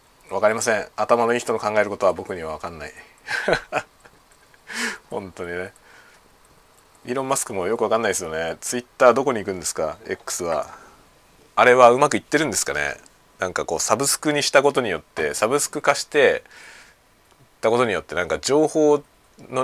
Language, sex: Japanese, male